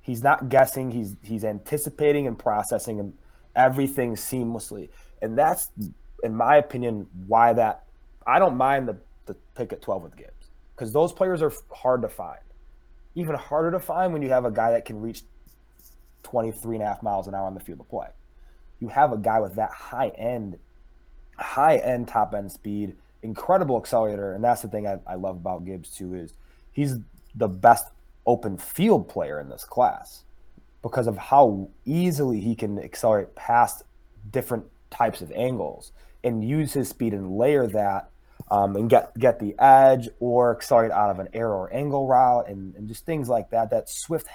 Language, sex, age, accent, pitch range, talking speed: English, male, 20-39, American, 100-135 Hz, 175 wpm